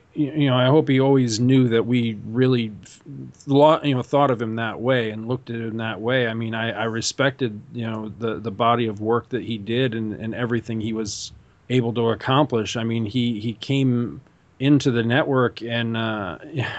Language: English